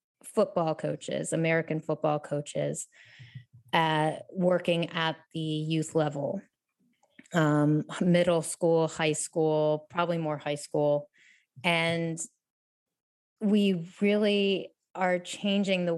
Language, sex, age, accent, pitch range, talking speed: English, female, 30-49, American, 160-200 Hz, 100 wpm